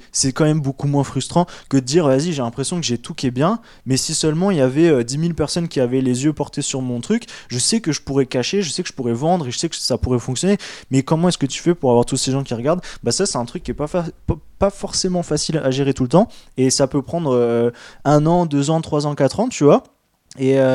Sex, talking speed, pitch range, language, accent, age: male, 290 wpm, 125-165 Hz, French, French, 20-39